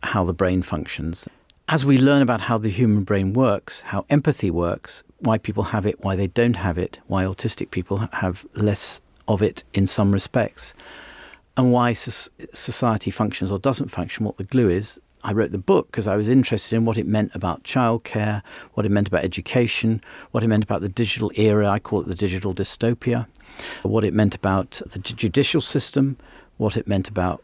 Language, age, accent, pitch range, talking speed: English, 50-69, British, 95-120 Hz, 195 wpm